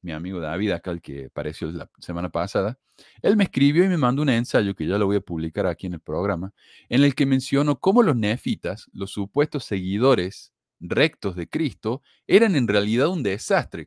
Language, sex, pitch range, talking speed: Spanish, male, 90-130 Hz, 200 wpm